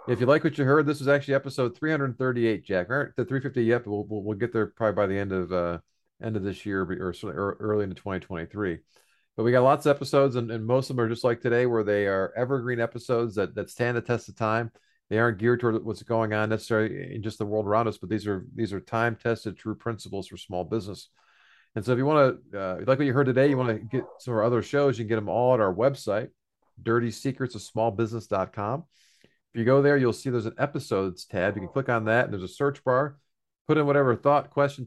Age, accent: 40-59, American